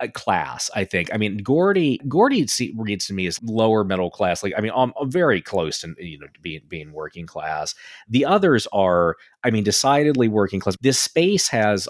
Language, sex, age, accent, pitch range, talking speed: English, male, 30-49, American, 90-120 Hz, 190 wpm